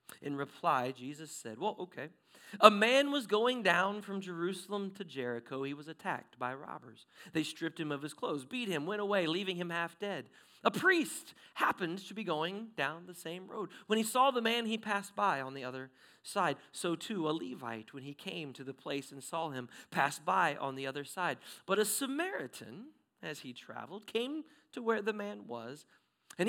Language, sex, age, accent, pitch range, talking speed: English, male, 40-59, American, 135-200 Hz, 200 wpm